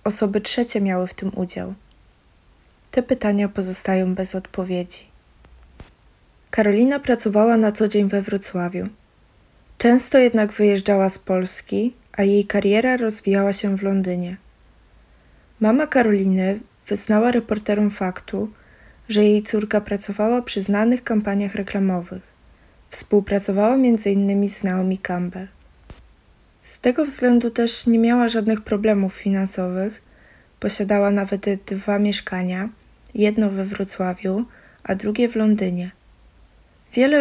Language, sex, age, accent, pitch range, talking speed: Polish, female, 20-39, native, 190-220 Hz, 110 wpm